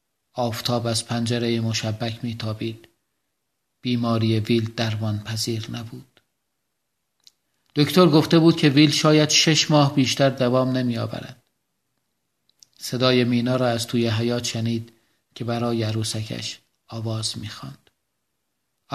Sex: male